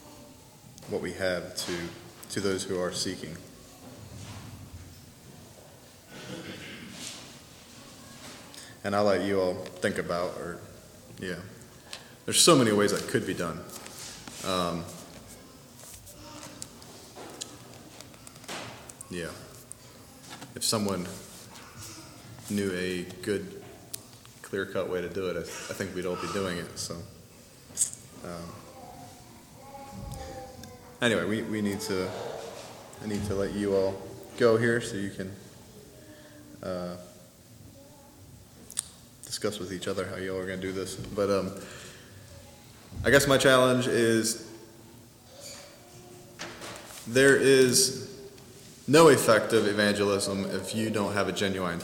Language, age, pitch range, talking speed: English, 30-49, 95-115 Hz, 110 wpm